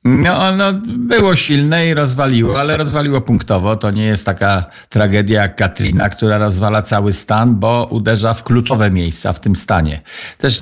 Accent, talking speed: native, 160 wpm